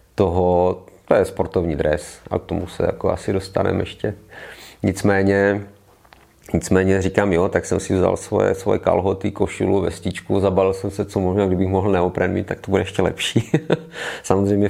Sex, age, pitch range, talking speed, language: male, 30-49, 90-100 Hz, 165 wpm, Czech